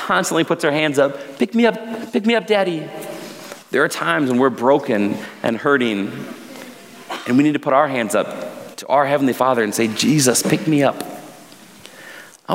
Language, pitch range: English, 130-190 Hz